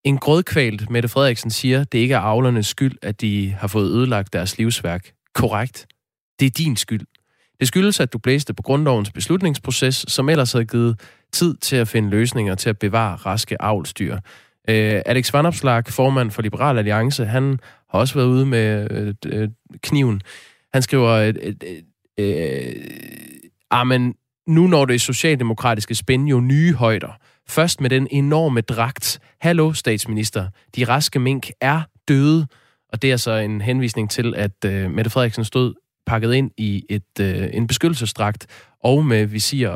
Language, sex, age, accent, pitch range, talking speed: Danish, male, 20-39, native, 110-135 Hz, 165 wpm